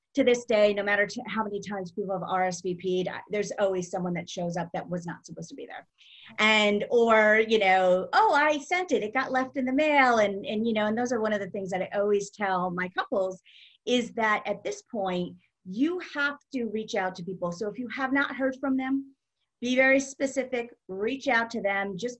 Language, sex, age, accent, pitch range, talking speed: English, female, 40-59, American, 195-265 Hz, 225 wpm